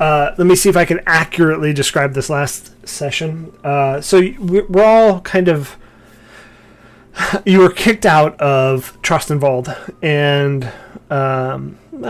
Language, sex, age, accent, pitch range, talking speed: English, male, 30-49, American, 130-165 Hz, 130 wpm